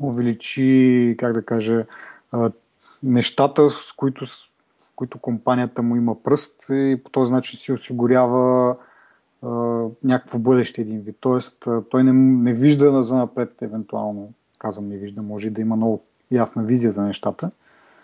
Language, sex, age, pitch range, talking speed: Bulgarian, male, 30-49, 115-140 Hz, 145 wpm